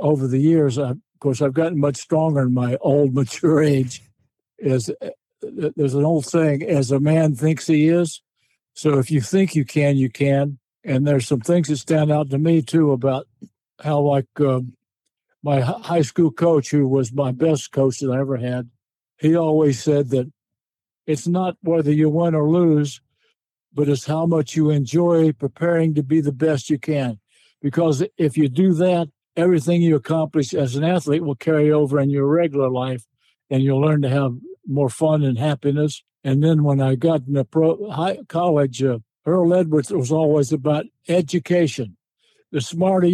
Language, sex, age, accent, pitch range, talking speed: English, male, 60-79, American, 135-165 Hz, 175 wpm